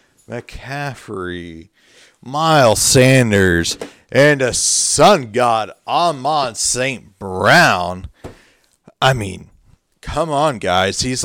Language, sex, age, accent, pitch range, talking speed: English, male, 40-59, American, 100-155 Hz, 85 wpm